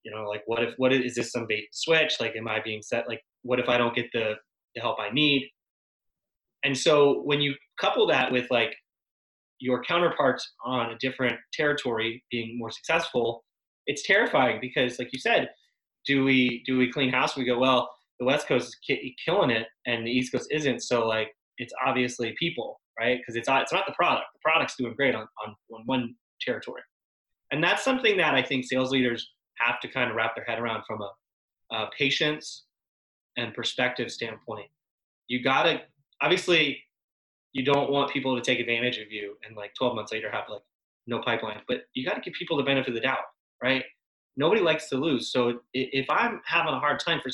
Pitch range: 115-135 Hz